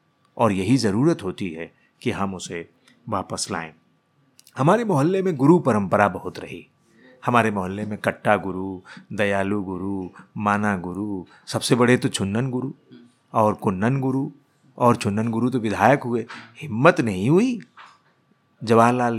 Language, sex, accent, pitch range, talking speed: Hindi, male, native, 110-145 Hz, 140 wpm